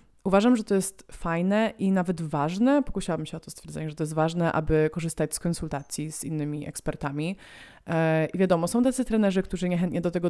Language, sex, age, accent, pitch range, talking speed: Polish, female, 20-39, native, 165-190 Hz, 190 wpm